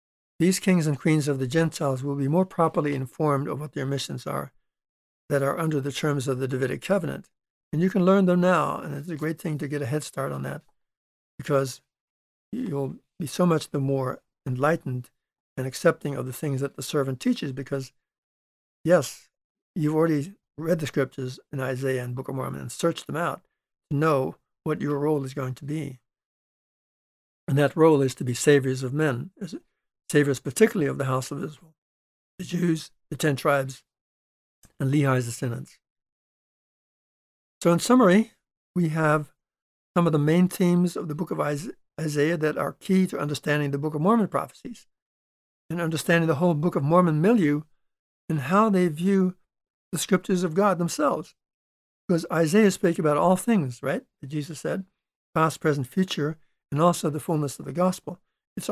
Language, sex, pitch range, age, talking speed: English, male, 140-175 Hz, 60-79, 180 wpm